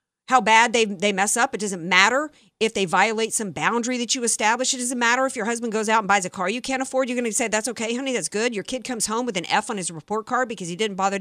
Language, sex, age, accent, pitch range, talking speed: English, female, 50-69, American, 200-260 Hz, 295 wpm